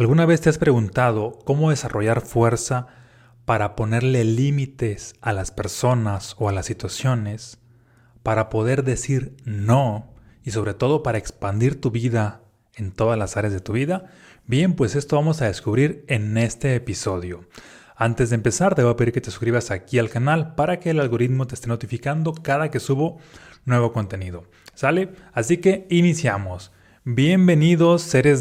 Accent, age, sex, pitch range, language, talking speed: Mexican, 30-49, male, 110-140 Hz, Spanish, 160 wpm